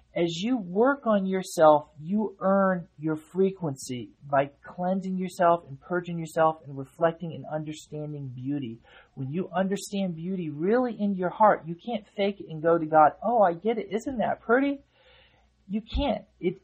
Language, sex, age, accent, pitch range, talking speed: English, male, 40-59, American, 155-220 Hz, 165 wpm